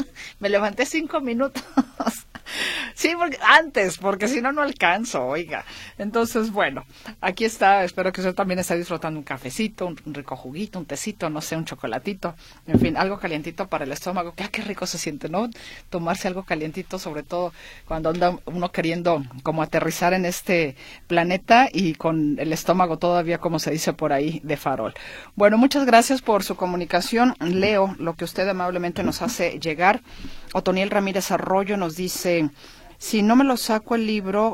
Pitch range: 165-210 Hz